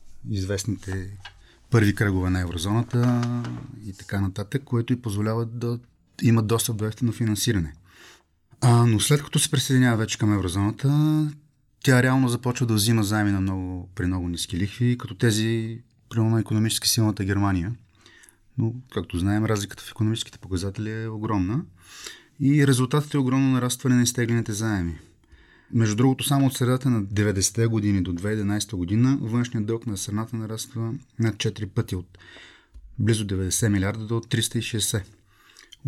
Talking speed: 145 wpm